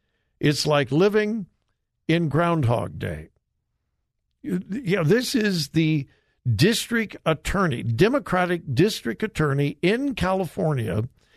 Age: 60-79